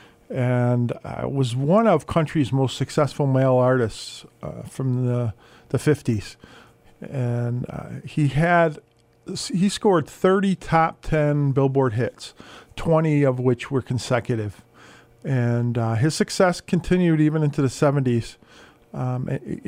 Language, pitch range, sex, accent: English, 120-160 Hz, male, American